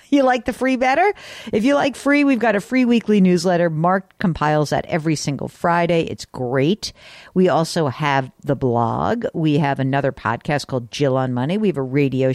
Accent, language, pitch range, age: American, English, 145-215 Hz, 50-69